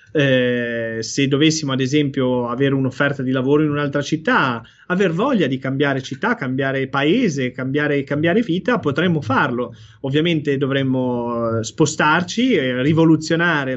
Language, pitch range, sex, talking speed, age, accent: Italian, 130-155 Hz, male, 125 wpm, 30-49, native